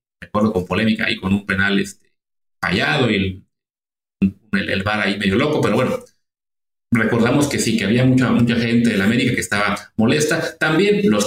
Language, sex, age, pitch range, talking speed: English, male, 30-49, 105-145 Hz, 185 wpm